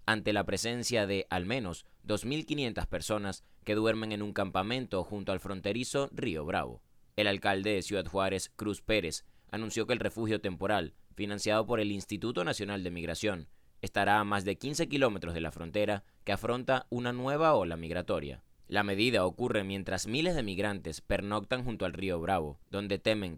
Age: 20-39